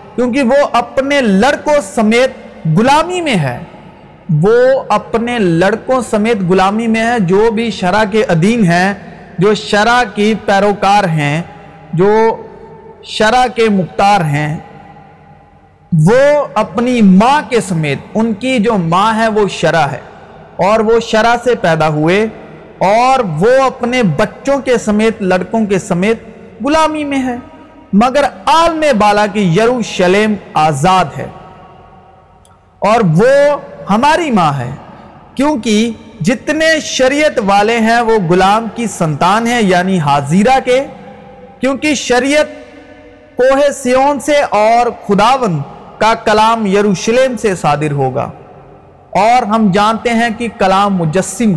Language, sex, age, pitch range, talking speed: Urdu, male, 40-59, 190-250 Hz, 125 wpm